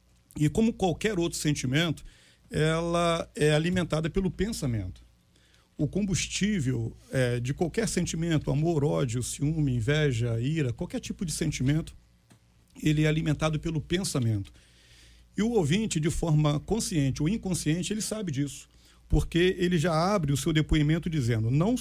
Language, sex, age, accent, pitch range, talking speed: Portuguese, male, 40-59, Brazilian, 135-170 Hz, 140 wpm